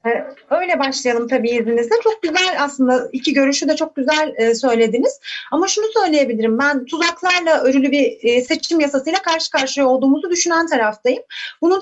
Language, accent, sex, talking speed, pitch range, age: Turkish, native, female, 140 wpm, 245-375 Hz, 30-49